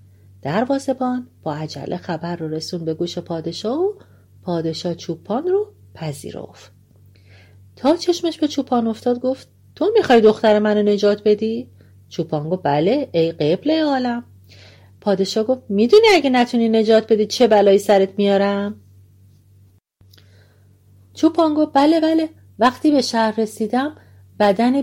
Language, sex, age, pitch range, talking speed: Persian, female, 40-59, 155-245 Hz, 130 wpm